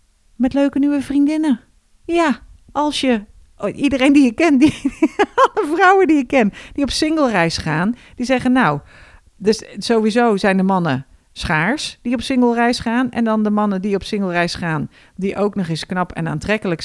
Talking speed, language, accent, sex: 185 wpm, Dutch, Dutch, female